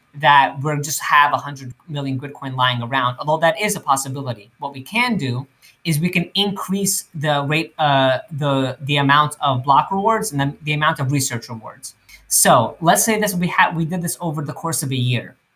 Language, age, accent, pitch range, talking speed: English, 30-49, American, 140-185 Hz, 205 wpm